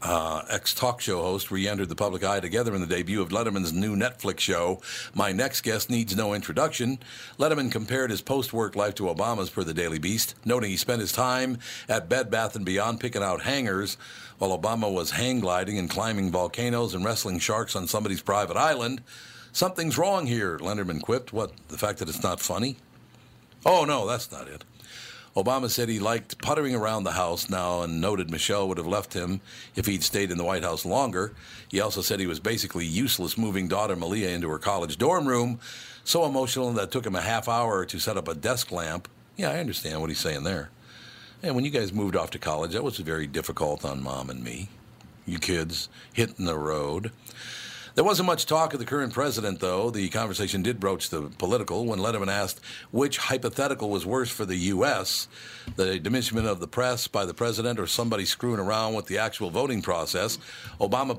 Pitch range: 95-120 Hz